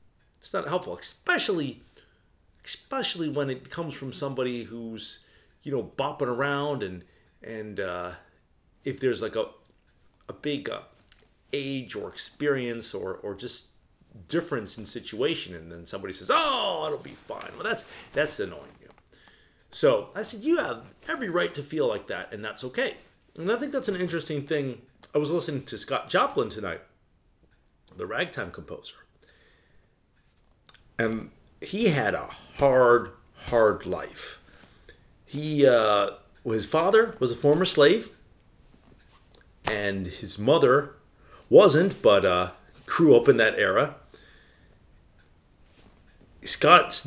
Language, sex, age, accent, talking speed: English, male, 40-59, American, 135 wpm